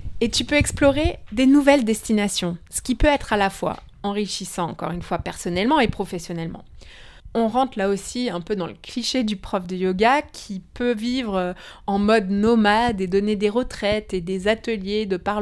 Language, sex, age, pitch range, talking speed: French, female, 20-39, 195-250 Hz, 190 wpm